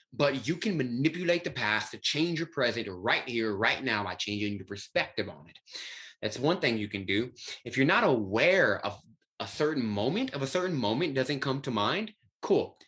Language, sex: English, male